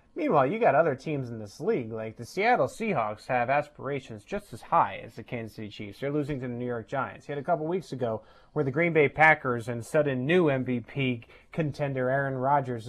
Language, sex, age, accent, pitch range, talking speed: English, male, 30-49, American, 125-160 Hz, 220 wpm